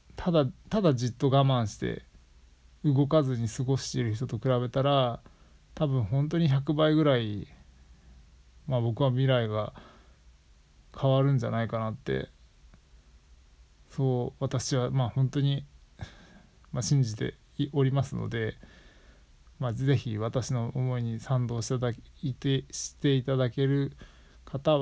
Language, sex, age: Japanese, male, 20-39